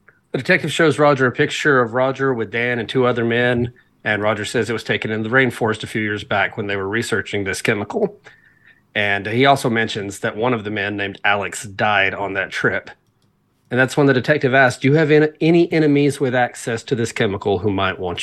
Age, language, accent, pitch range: 30-49, English, American, 110-140 Hz